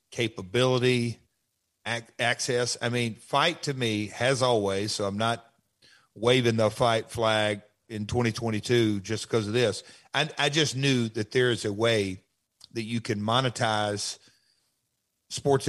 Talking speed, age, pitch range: 145 wpm, 50-69, 105-125 Hz